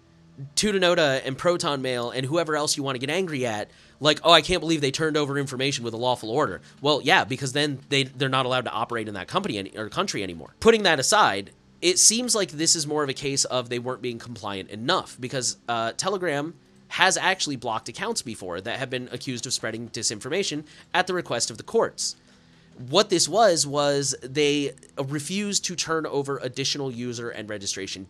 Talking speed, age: 205 wpm, 30-49